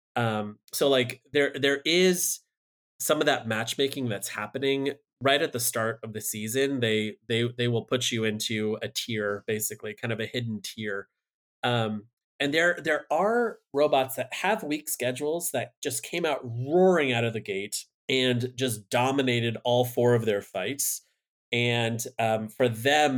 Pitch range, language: 110-135 Hz, English